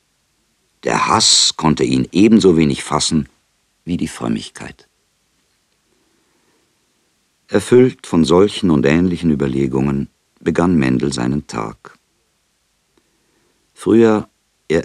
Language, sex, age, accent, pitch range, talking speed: German, male, 50-69, German, 65-85 Hz, 90 wpm